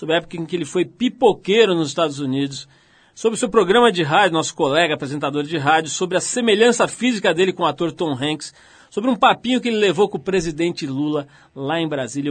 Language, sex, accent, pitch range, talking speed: Portuguese, male, Brazilian, 150-190 Hz, 220 wpm